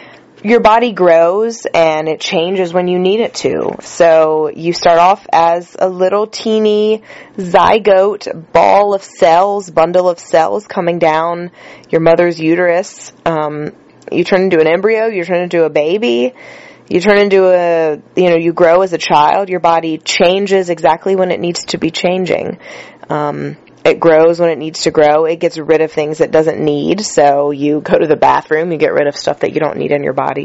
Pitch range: 160-195 Hz